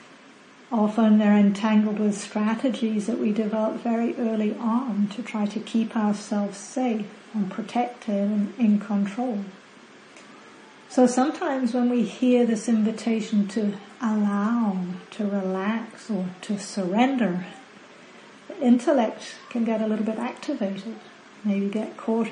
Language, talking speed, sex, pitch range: English, 125 wpm, female, 210-245 Hz